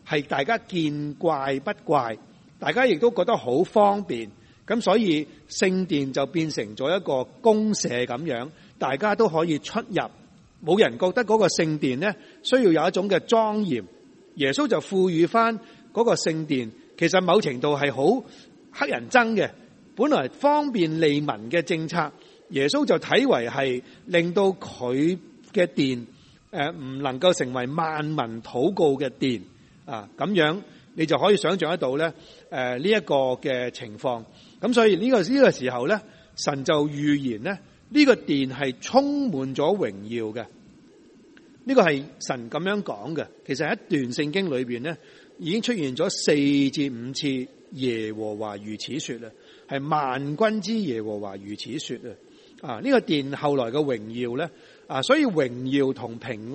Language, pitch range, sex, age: Chinese, 130-200 Hz, male, 30-49